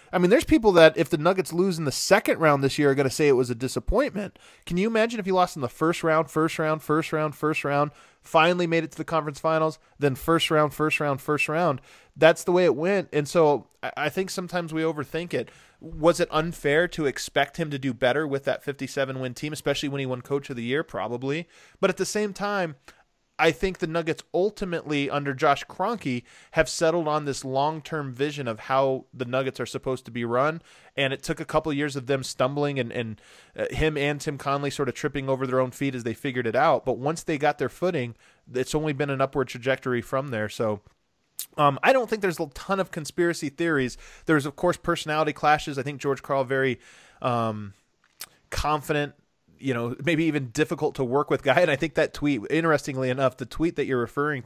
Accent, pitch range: American, 135-165 Hz